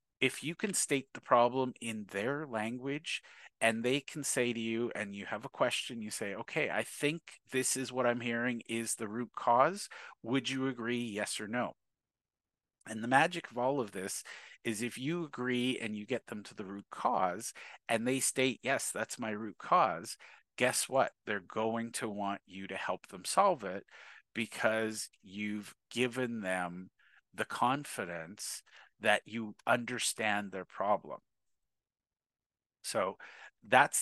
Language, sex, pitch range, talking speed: English, male, 110-130 Hz, 160 wpm